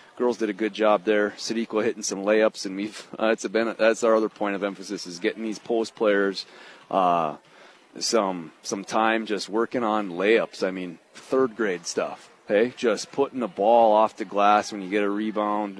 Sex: male